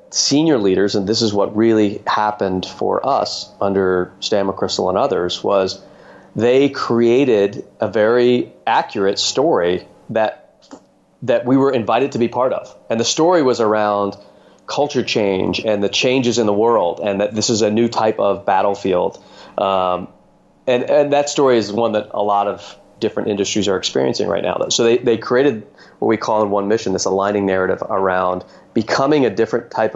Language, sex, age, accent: English, male, 30-49, American